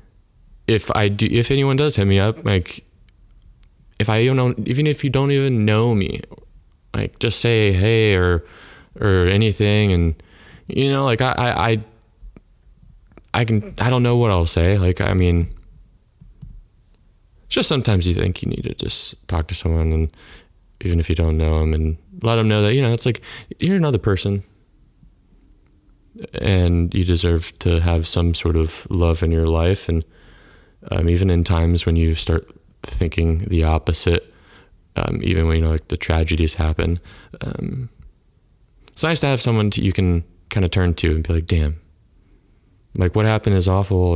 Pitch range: 85-110 Hz